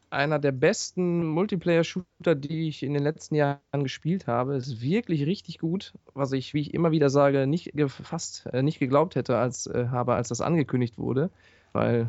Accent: German